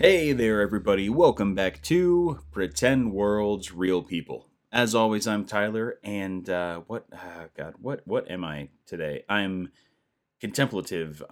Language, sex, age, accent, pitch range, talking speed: English, male, 30-49, American, 85-100 Hz, 140 wpm